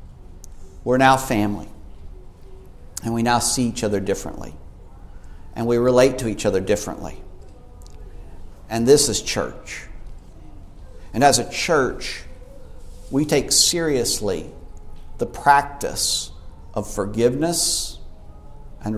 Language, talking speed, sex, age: English, 105 wpm, male, 50-69